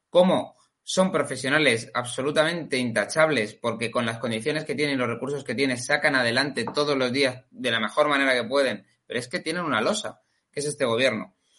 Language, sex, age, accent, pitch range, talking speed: Spanish, male, 20-39, Spanish, 130-165 Hz, 190 wpm